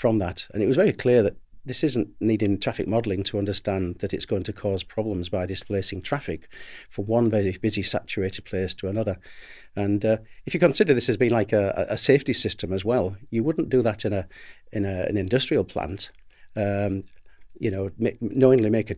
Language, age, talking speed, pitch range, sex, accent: English, 40-59, 200 wpm, 100-115 Hz, male, British